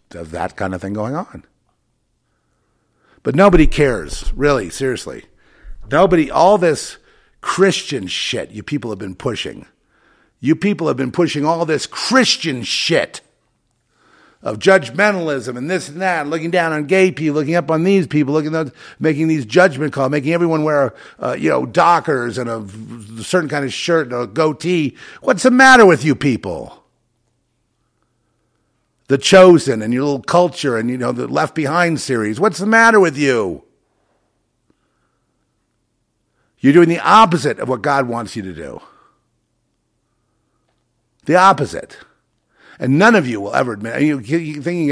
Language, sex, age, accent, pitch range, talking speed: English, male, 50-69, American, 115-165 Hz, 155 wpm